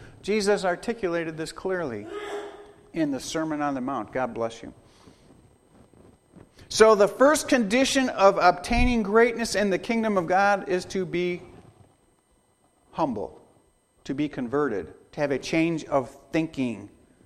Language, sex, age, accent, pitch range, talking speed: English, male, 50-69, American, 145-225 Hz, 130 wpm